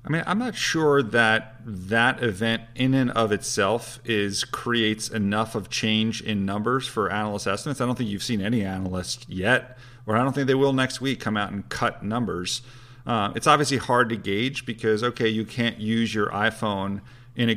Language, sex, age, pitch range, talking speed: English, male, 40-59, 110-125 Hz, 200 wpm